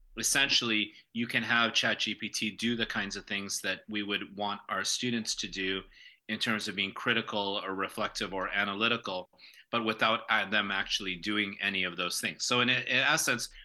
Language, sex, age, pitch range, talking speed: English, male, 30-49, 100-115 Hz, 175 wpm